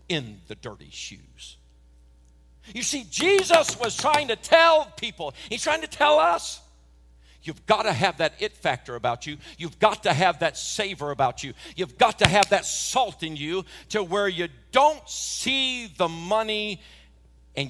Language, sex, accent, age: English, male, American, 60-79